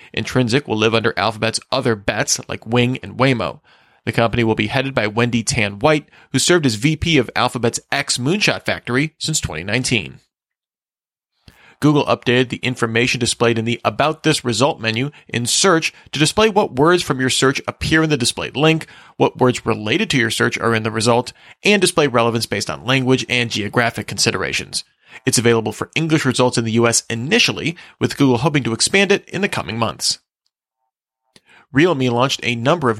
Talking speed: 180 wpm